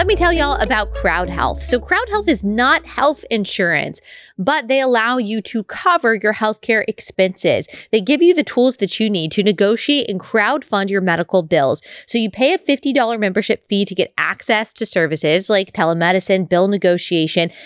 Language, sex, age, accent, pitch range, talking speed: English, female, 20-39, American, 190-235 Hz, 190 wpm